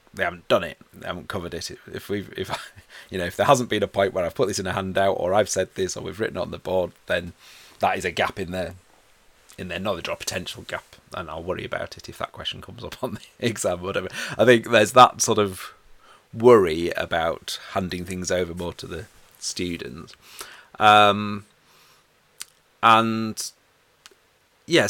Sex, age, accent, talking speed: male, 30-49, British, 200 wpm